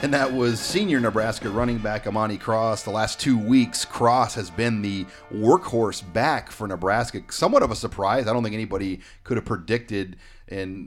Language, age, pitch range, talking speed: English, 30-49, 95-115 Hz, 180 wpm